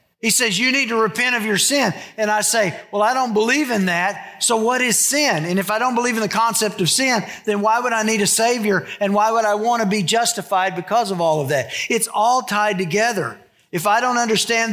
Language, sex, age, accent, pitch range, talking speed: English, male, 50-69, American, 180-220 Hz, 245 wpm